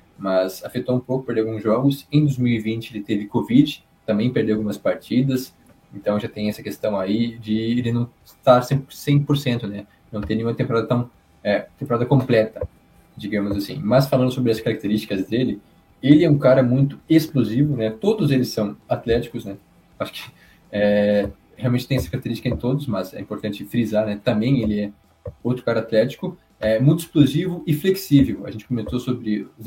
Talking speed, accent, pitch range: 175 wpm, Brazilian, 105-130 Hz